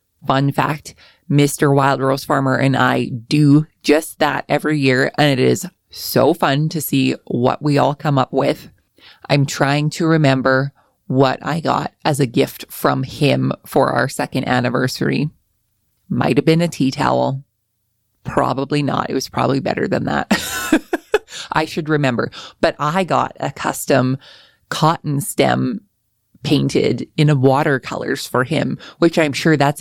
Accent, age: American, 20-39